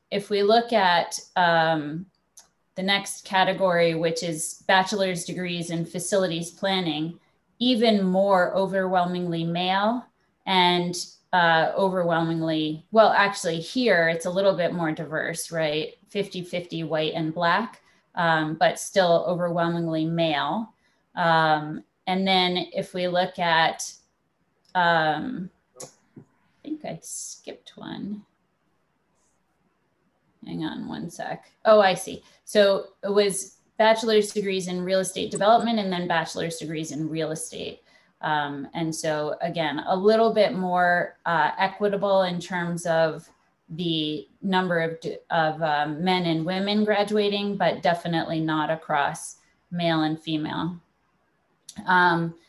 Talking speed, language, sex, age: 120 wpm, English, female, 20-39